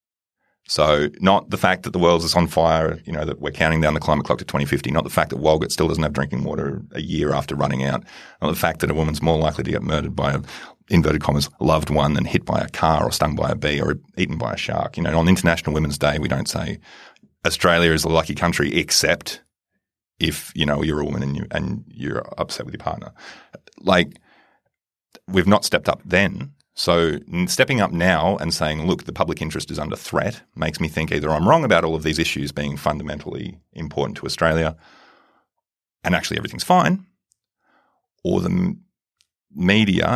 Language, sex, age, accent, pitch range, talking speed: English, male, 30-49, Australian, 75-90 Hz, 205 wpm